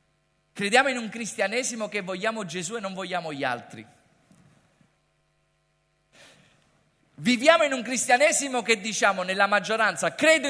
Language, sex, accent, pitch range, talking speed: Italian, male, native, 230-315 Hz, 120 wpm